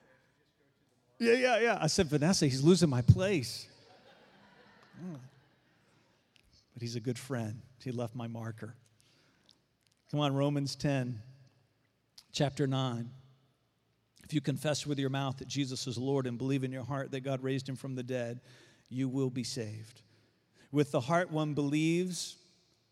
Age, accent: 50-69, American